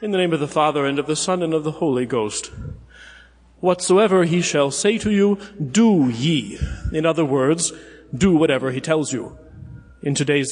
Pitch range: 140-185 Hz